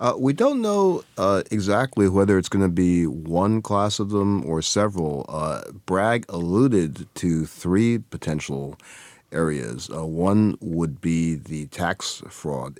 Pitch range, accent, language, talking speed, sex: 75-95 Hz, American, English, 145 wpm, male